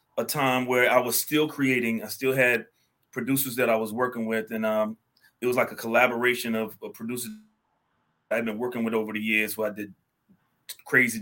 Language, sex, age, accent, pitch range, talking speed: English, male, 30-49, American, 110-125 Hz, 205 wpm